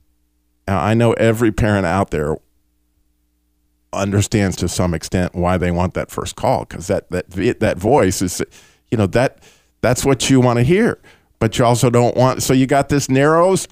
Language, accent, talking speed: English, American, 185 wpm